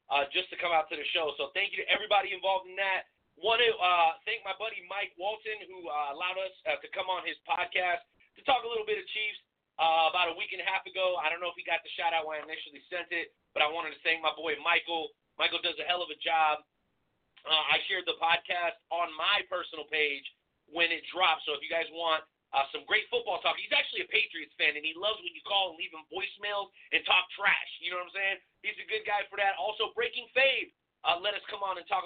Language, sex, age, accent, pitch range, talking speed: English, male, 30-49, American, 160-195 Hz, 260 wpm